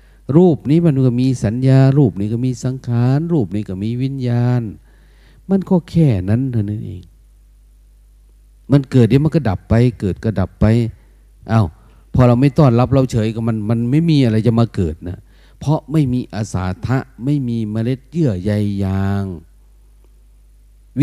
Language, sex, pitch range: Thai, male, 90-135 Hz